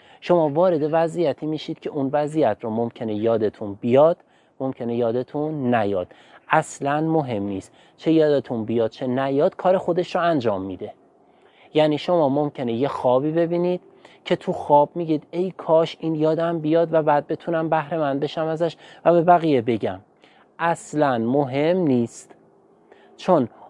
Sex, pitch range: male, 130-165 Hz